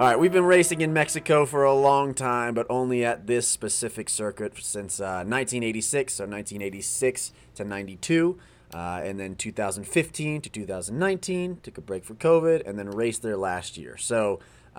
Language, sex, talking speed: English, male, 210 wpm